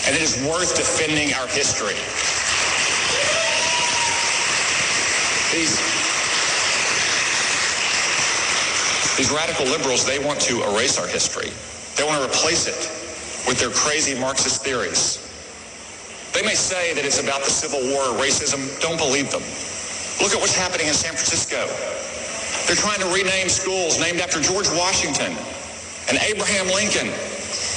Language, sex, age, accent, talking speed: English, male, 50-69, American, 125 wpm